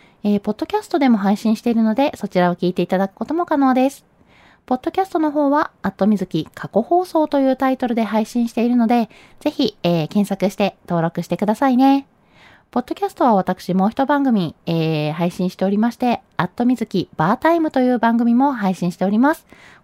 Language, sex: Japanese, female